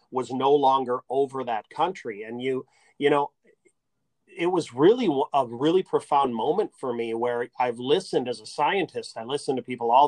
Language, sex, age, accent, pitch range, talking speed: English, male, 40-59, American, 130-175 Hz, 180 wpm